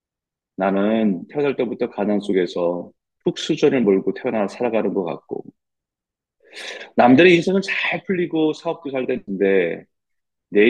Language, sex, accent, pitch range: Korean, male, native, 100-150 Hz